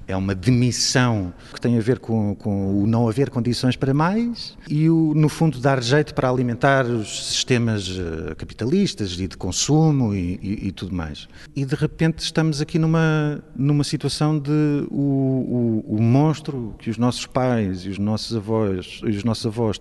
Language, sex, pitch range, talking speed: Portuguese, male, 110-140 Hz, 180 wpm